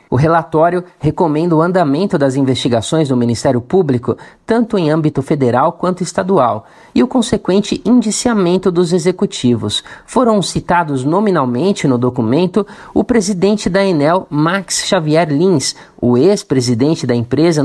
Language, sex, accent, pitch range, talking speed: Portuguese, male, Brazilian, 135-190 Hz, 130 wpm